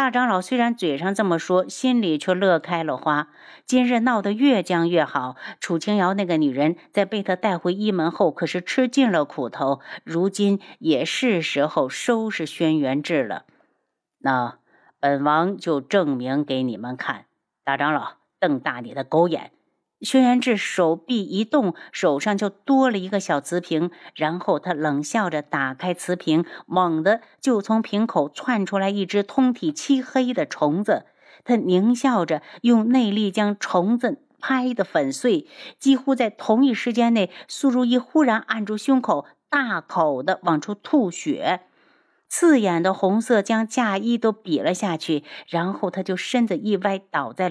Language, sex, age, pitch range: Chinese, female, 50-69, 170-250 Hz